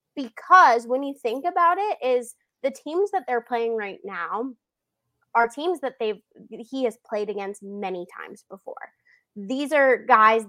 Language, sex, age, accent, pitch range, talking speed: English, female, 20-39, American, 220-290 Hz, 160 wpm